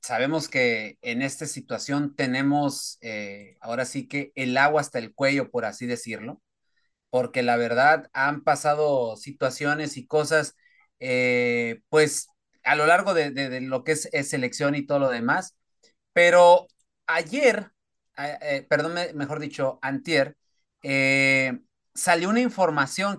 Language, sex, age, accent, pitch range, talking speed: Spanish, male, 30-49, Mexican, 140-185 Hz, 135 wpm